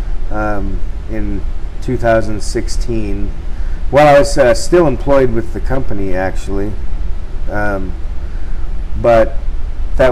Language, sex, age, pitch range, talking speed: English, male, 40-59, 85-120 Hz, 95 wpm